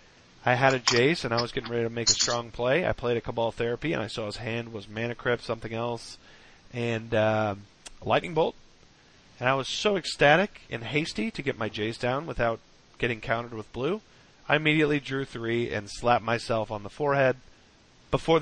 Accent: American